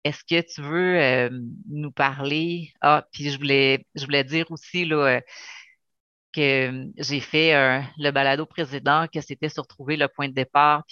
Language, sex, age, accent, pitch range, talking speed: French, female, 30-49, Canadian, 130-150 Hz, 175 wpm